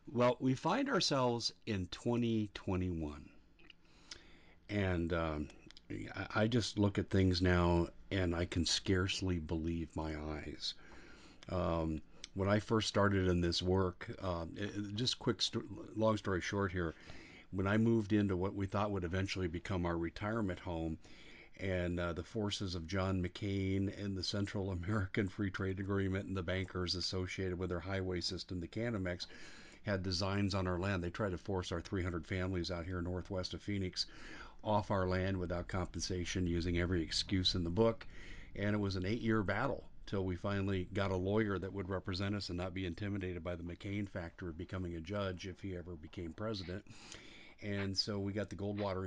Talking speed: 170 wpm